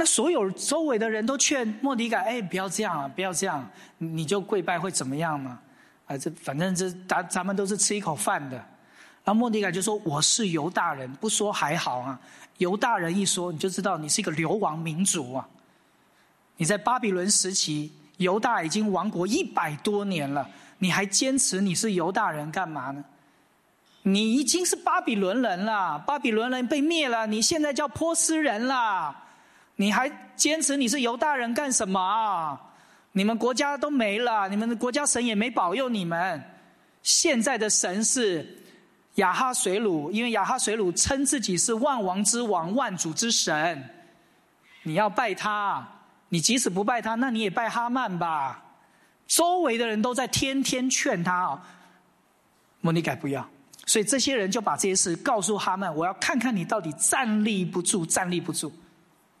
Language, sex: English, male